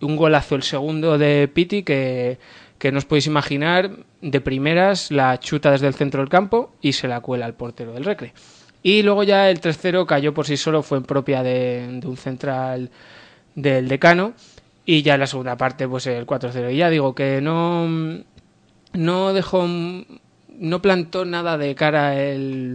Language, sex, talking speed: Spanish, male, 180 wpm